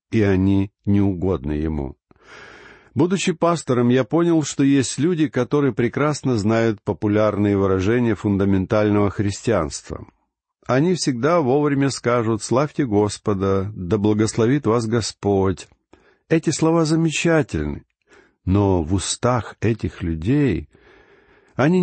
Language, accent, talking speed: Russian, native, 100 wpm